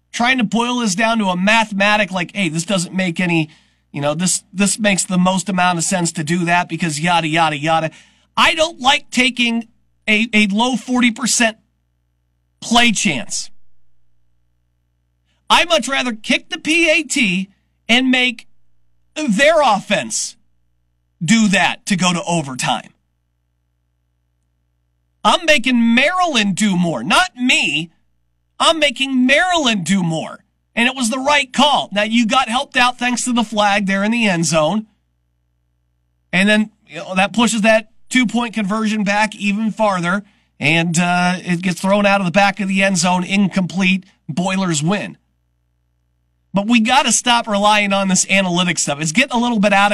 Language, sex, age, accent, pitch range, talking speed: English, male, 40-59, American, 155-230 Hz, 160 wpm